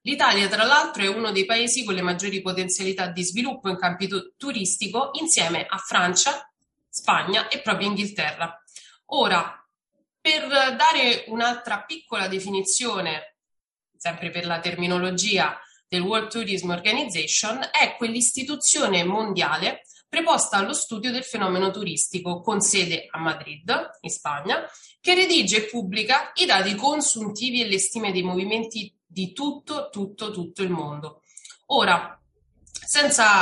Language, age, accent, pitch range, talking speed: Italian, 30-49, native, 180-235 Hz, 130 wpm